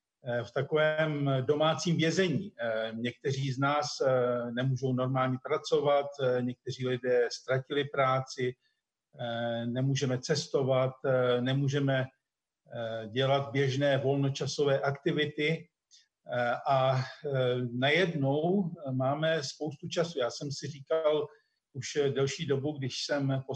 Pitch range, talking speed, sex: 130-150 Hz, 90 wpm, male